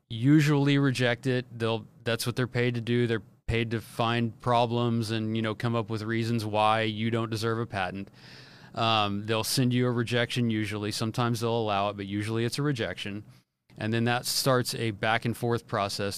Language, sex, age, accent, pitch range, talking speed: English, male, 30-49, American, 105-125 Hz, 195 wpm